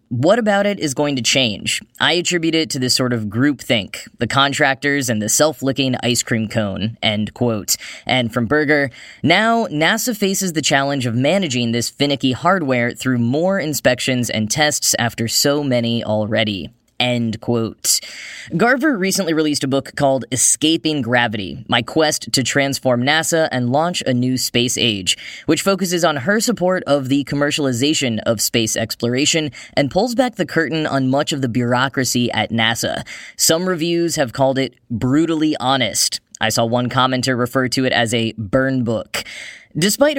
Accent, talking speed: American, 165 wpm